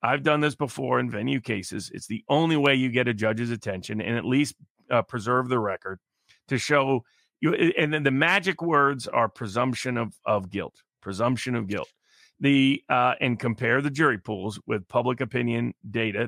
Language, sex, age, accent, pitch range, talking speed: English, male, 40-59, American, 115-145 Hz, 185 wpm